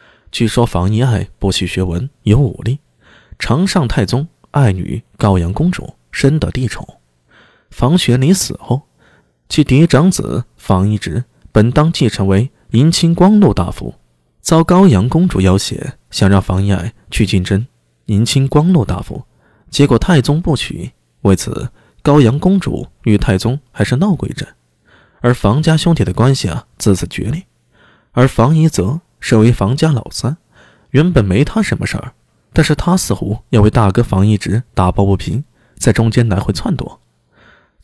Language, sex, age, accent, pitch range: Chinese, male, 20-39, native, 100-145 Hz